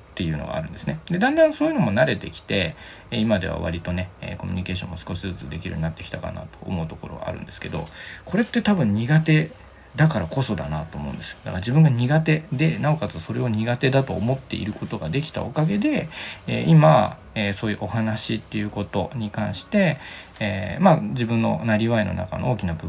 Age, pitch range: 20-39, 90-145 Hz